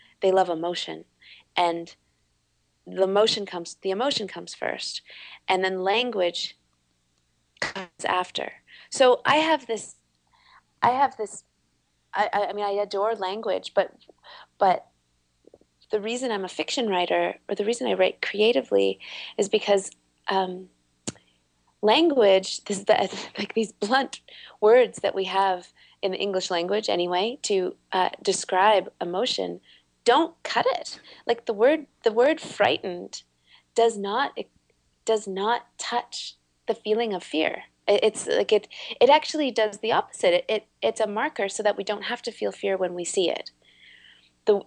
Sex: female